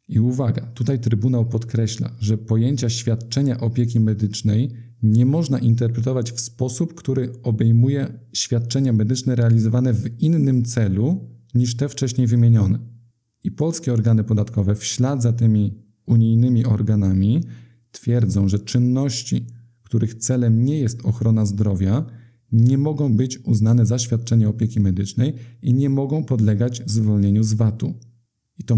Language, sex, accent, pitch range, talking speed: Polish, male, native, 110-125 Hz, 130 wpm